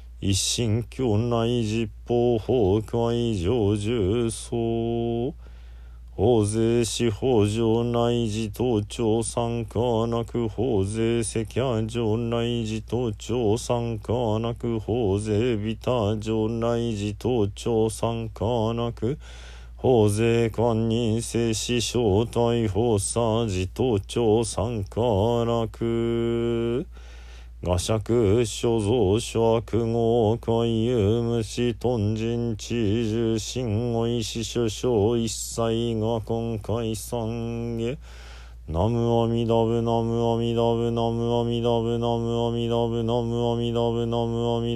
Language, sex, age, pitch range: Japanese, male, 40-59, 110-115 Hz